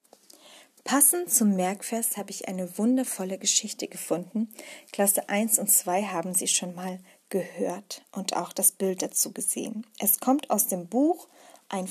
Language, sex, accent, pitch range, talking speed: German, female, German, 200-270 Hz, 150 wpm